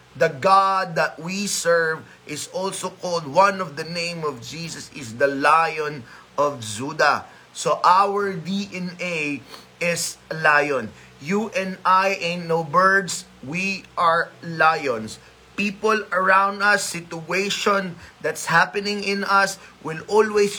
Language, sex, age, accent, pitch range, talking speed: Filipino, male, 30-49, native, 150-190 Hz, 130 wpm